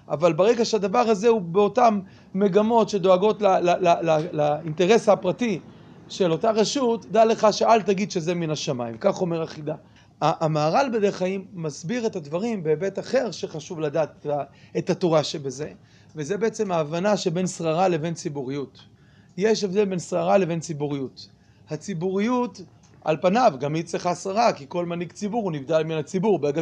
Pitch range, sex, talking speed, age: 155-215 Hz, male, 155 wpm, 30-49